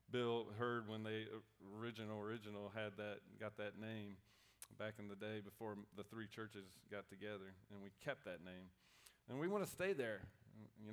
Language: English